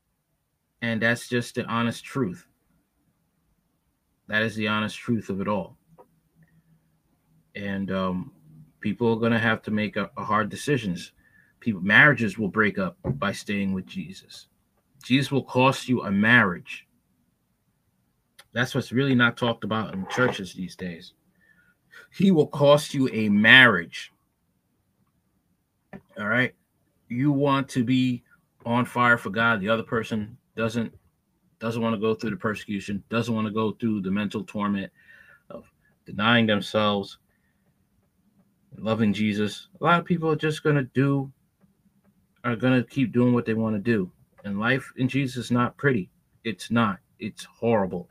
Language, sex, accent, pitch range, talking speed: English, male, American, 105-130 Hz, 150 wpm